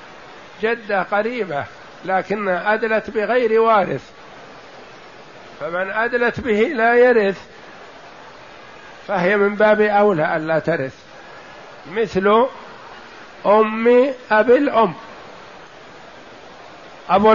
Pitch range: 190-225 Hz